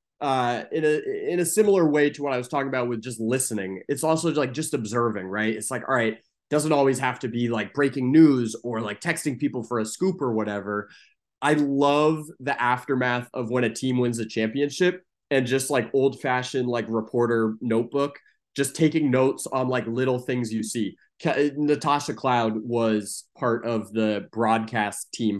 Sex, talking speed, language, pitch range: male, 185 wpm, English, 110-135 Hz